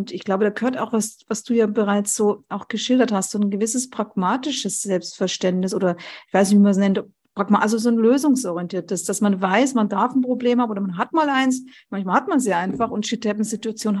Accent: German